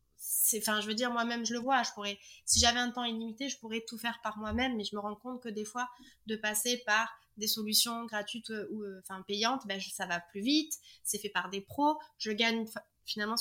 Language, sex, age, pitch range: French, female, 20-39, 210-245 Hz